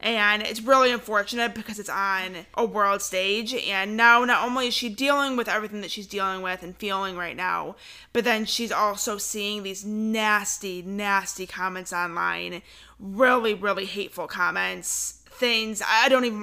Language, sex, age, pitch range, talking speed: English, female, 20-39, 190-235 Hz, 165 wpm